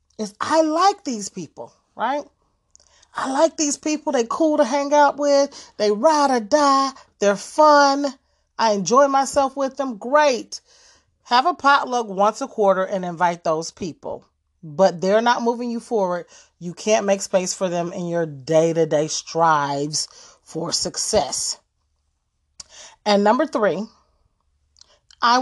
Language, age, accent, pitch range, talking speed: English, 30-49, American, 180-265 Hz, 140 wpm